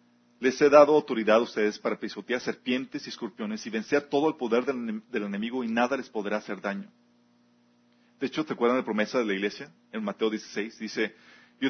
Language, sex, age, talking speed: Spanish, male, 40-59, 205 wpm